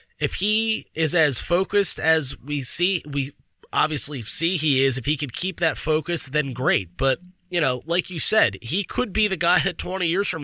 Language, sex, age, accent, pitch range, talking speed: English, male, 20-39, American, 130-160 Hz, 205 wpm